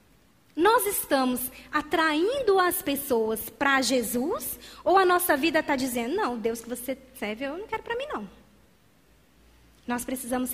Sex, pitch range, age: female, 240-340 Hz, 20-39